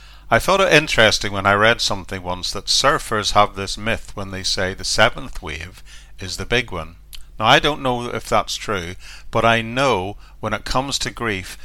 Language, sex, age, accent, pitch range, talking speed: English, male, 50-69, British, 95-115 Hz, 200 wpm